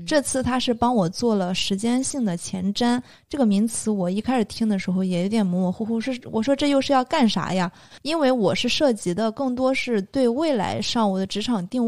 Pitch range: 185-230 Hz